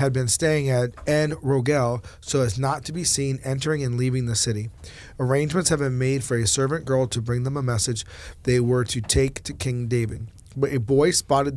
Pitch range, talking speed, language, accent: 115-140 Hz, 205 wpm, English, American